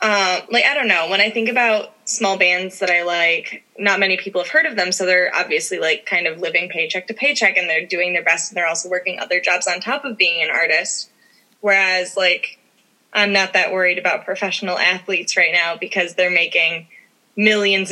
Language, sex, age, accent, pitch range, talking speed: English, female, 20-39, American, 180-215 Hz, 210 wpm